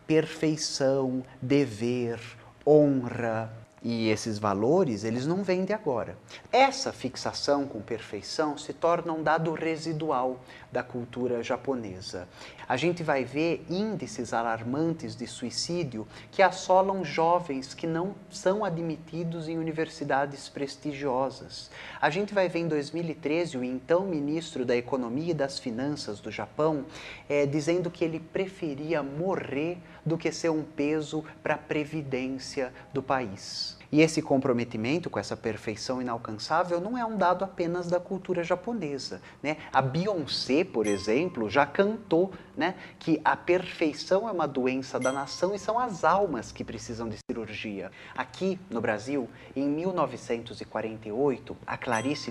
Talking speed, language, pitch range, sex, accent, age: 135 wpm, Portuguese, 120-165 Hz, male, Brazilian, 30-49